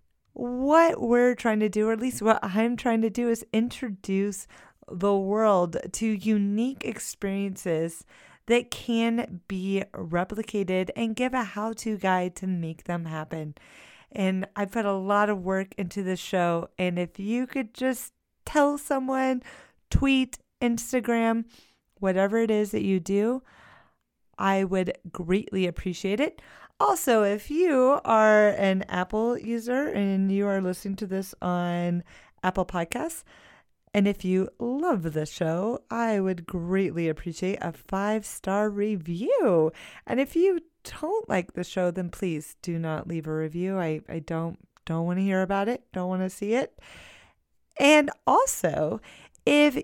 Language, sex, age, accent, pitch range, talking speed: English, female, 30-49, American, 180-230 Hz, 145 wpm